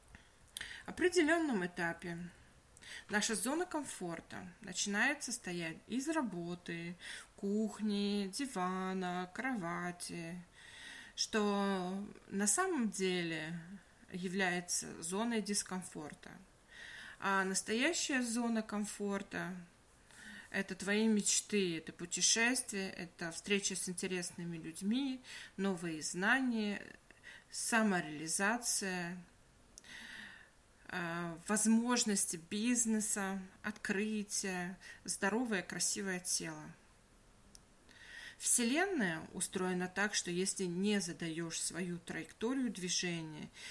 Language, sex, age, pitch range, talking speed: English, female, 20-39, 180-225 Hz, 75 wpm